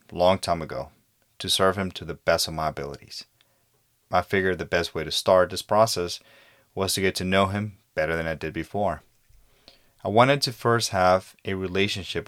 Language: English